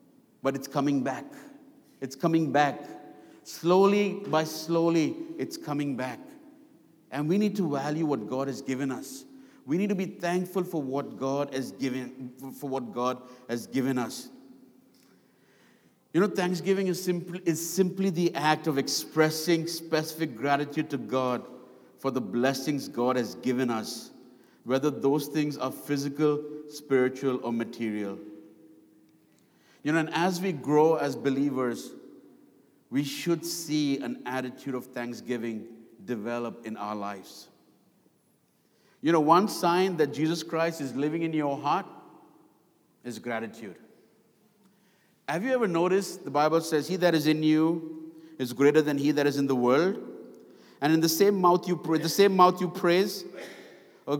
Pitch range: 135-175 Hz